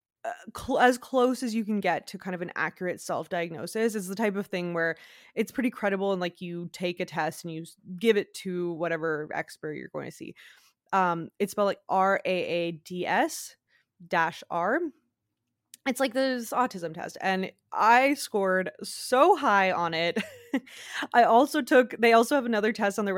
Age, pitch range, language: 20-39, 175-230 Hz, English